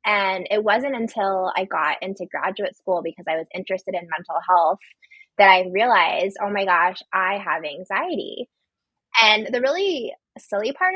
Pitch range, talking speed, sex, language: 190-255 Hz, 165 wpm, female, English